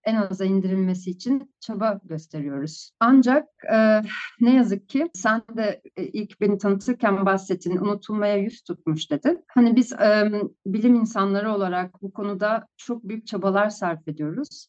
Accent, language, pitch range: native, Turkish, 185-225 Hz